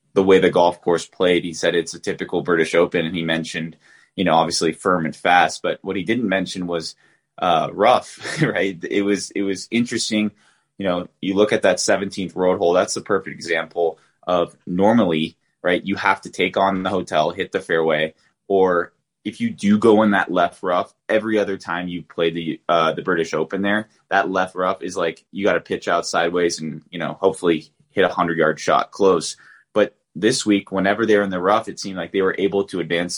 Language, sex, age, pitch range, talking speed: English, male, 20-39, 85-105 Hz, 215 wpm